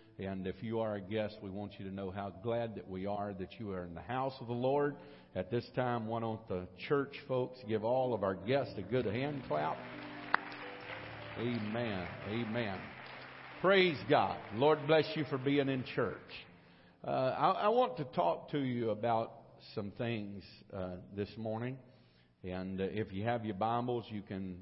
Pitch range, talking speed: 100-125 Hz, 185 wpm